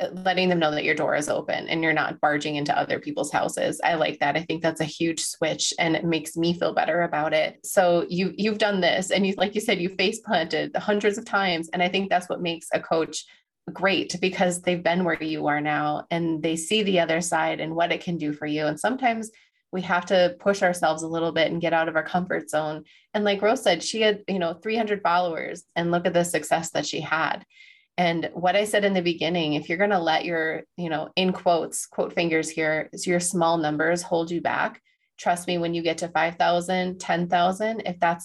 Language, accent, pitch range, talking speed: English, American, 160-185 Hz, 235 wpm